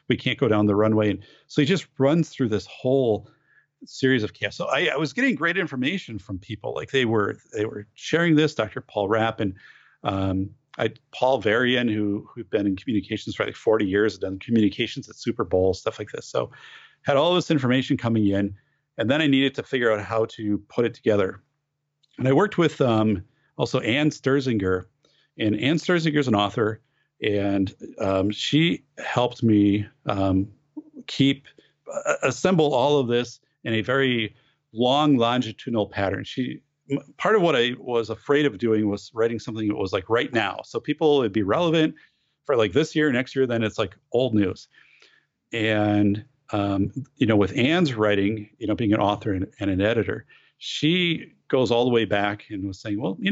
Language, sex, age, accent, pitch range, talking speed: English, male, 40-59, American, 105-145 Hz, 190 wpm